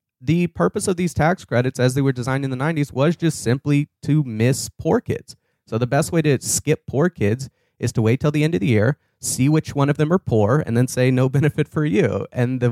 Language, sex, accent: English, male, American